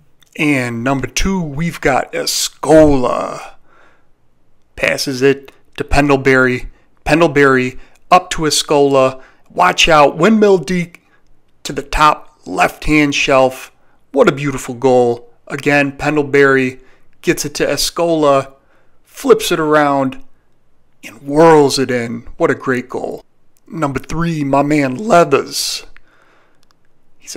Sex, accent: male, American